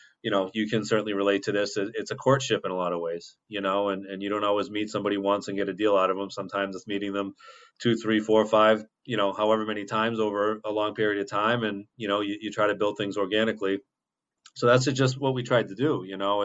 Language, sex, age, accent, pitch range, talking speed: English, male, 30-49, American, 100-110 Hz, 265 wpm